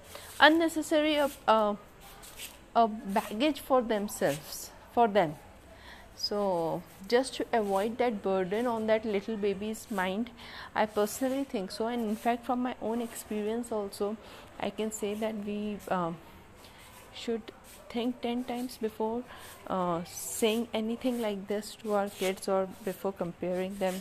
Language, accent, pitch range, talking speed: Hindi, native, 185-230 Hz, 145 wpm